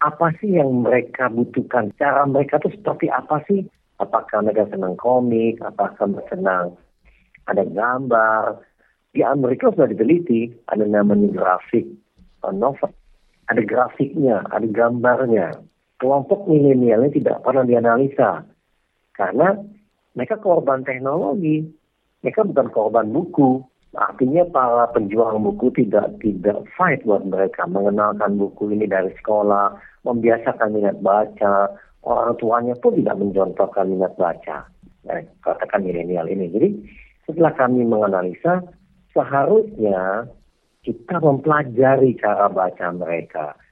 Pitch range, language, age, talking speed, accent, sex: 105-140 Hz, Indonesian, 50-69, 115 wpm, native, male